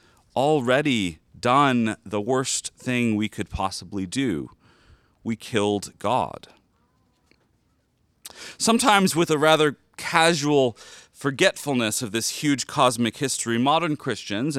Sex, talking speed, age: male, 105 wpm, 40-59